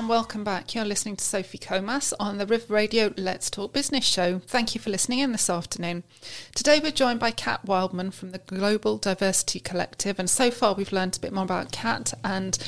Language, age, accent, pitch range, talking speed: English, 30-49, British, 185-220 Hz, 215 wpm